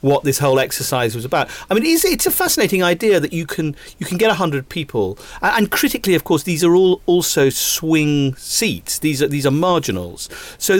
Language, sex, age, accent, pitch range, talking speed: English, male, 40-59, British, 125-165 Hz, 205 wpm